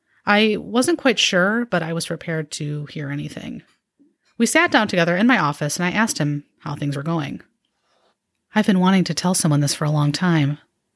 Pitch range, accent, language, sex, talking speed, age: 155-230 Hz, American, English, female, 205 wpm, 30-49